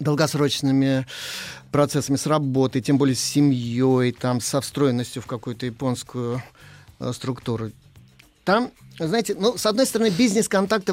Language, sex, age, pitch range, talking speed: Russian, male, 30-49, 125-175 Hz, 125 wpm